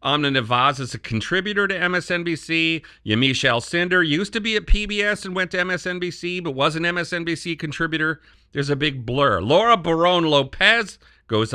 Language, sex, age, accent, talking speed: English, male, 40-59, American, 160 wpm